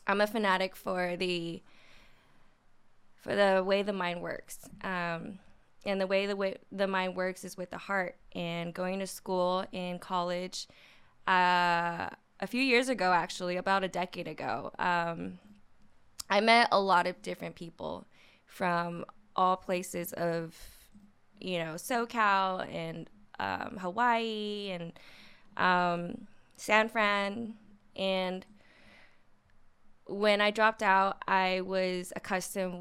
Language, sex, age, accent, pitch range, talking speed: English, female, 20-39, American, 175-195 Hz, 130 wpm